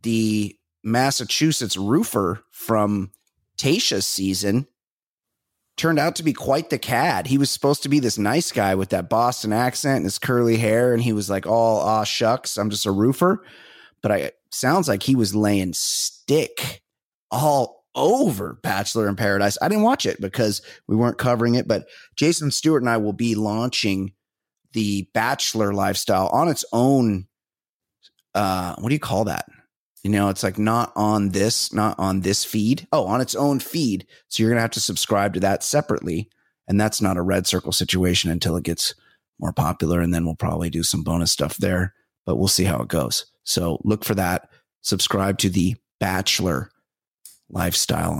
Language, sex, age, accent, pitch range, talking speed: English, male, 30-49, American, 95-120 Hz, 180 wpm